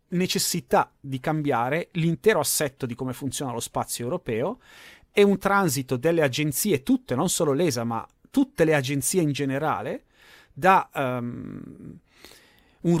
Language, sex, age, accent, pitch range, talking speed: Italian, male, 30-49, native, 130-160 Hz, 135 wpm